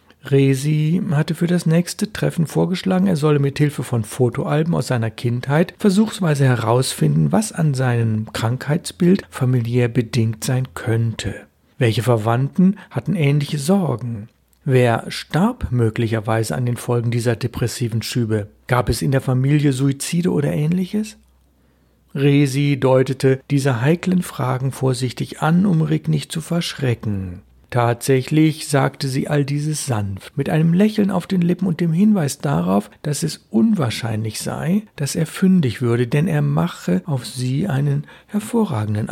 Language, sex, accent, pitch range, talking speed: German, male, German, 120-165 Hz, 140 wpm